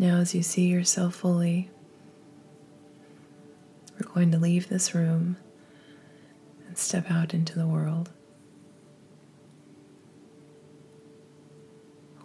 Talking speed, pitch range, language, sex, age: 95 wpm, 155-180 Hz, English, female, 20-39